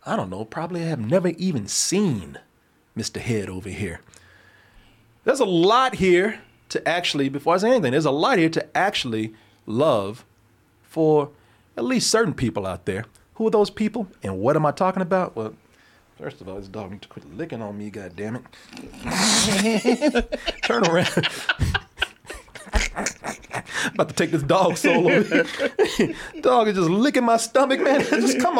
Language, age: English, 40-59